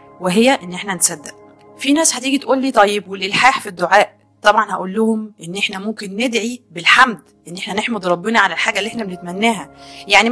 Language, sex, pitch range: Arabic, female, 195-245 Hz